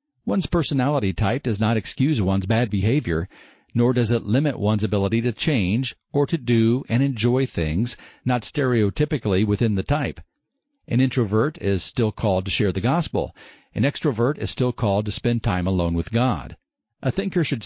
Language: English